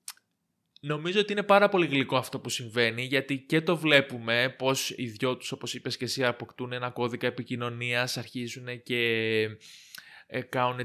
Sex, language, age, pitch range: male, Greek, 20-39, 120-155 Hz